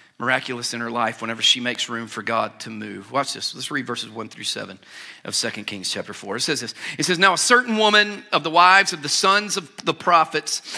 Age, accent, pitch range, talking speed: 40-59, American, 145-200 Hz, 240 wpm